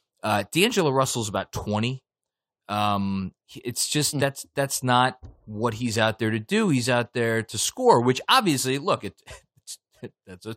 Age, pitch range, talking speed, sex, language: 20-39, 95-130 Hz, 160 wpm, male, English